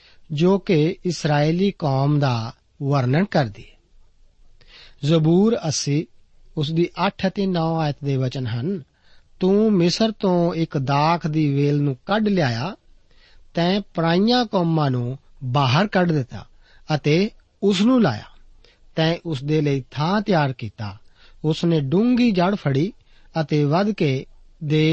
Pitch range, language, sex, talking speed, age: 135-180 Hz, Punjabi, male, 105 wpm, 40-59